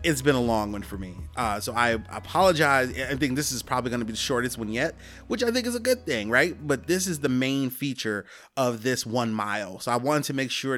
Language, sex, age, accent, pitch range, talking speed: English, male, 30-49, American, 120-160 Hz, 260 wpm